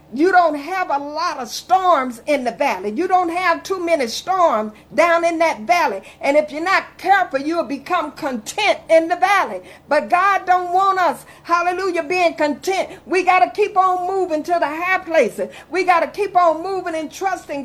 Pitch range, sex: 300-370 Hz, female